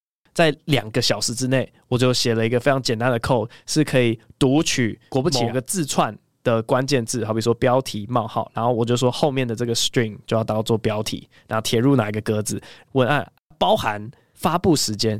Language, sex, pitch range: Chinese, male, 115-135 Hz